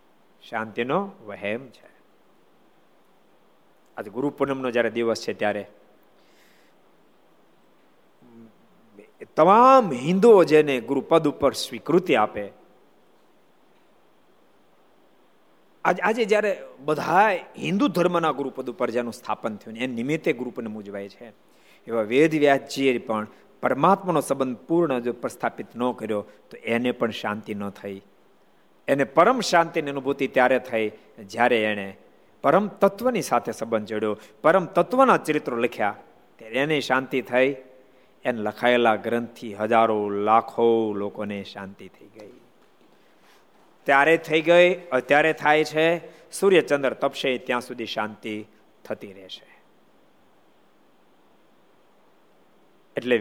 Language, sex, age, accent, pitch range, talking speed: Gujarati, male, 50-69, native, 110-160 Hz, 90 wpm